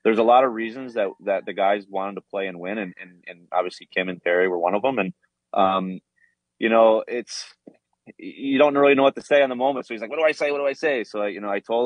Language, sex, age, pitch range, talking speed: English, male, 20-39, 95-120 Hz, 290 wpm